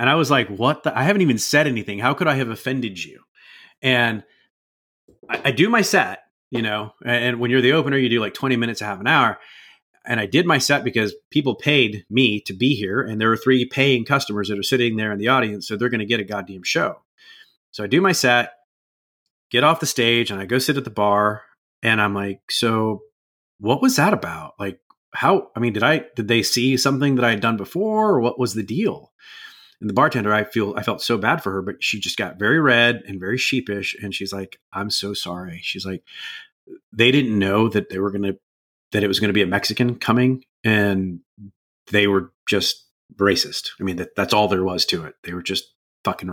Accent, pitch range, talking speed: American, 100-130 Hz, 230 wpm